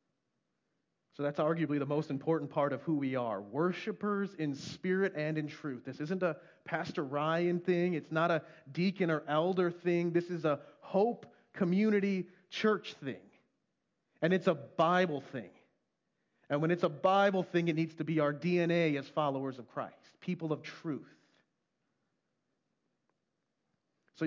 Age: 30-49